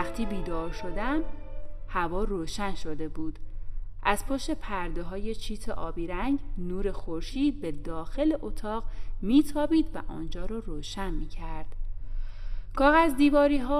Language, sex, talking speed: Persian, female, 120 wpm